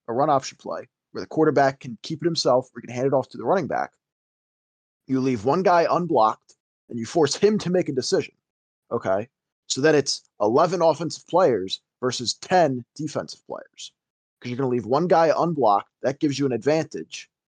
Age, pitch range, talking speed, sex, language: 20-39, 120-160 Hz, 200 wpm, male, English